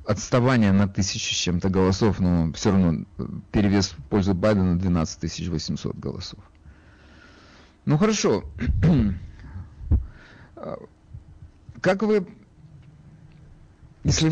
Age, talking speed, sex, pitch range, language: 50-69, 80 wpm, male, 100-150 Hz, Russian